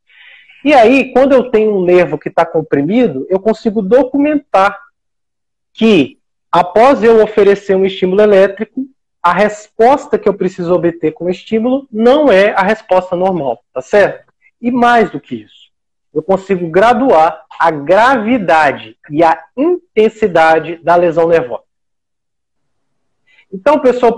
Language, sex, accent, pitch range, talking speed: Portuguese, male, Brazilian, 170-230 Hz, 135 wpm